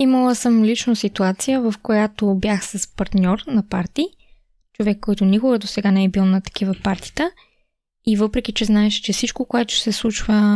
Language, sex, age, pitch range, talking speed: Bulgarian, female, 20-39, 210-240 Hz, 175 wpm